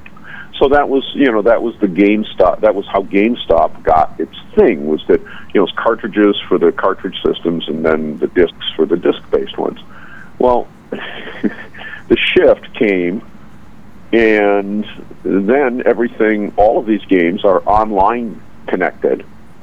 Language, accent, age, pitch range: English, American, 50-69, 100-130 Hz